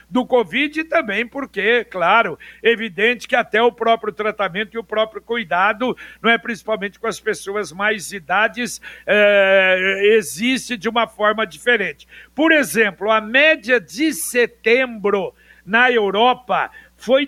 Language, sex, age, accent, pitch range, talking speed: Portuguese, male, 60-79, Brazilian, 220-270 Hz, 135 wpm